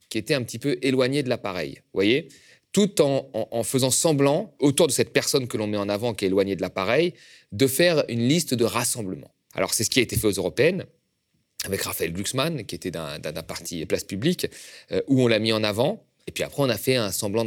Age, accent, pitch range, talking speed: 30-49, French, 100-140 Hz, 245 wpm